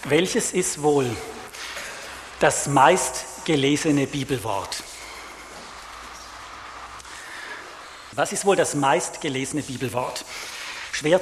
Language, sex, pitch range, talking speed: English, male, 145-185 Hz, 70 wpm